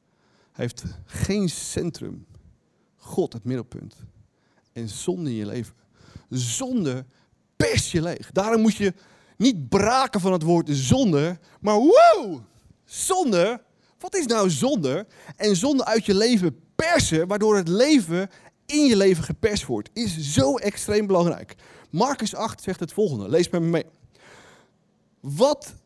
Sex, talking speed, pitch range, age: male, 135 wpm, 155-215 Hz, 30-49